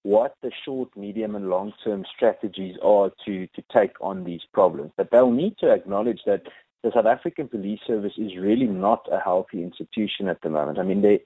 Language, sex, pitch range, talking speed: English, male, 100-120 Hz, 195 wpm